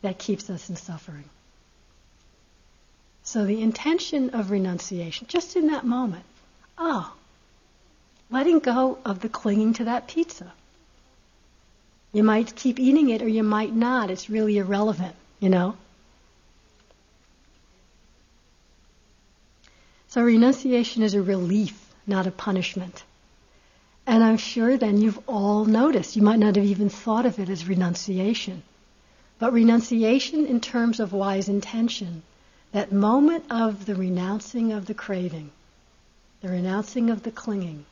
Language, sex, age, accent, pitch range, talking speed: English, female, 60-79, American, 190-230 Hz, 130 wpm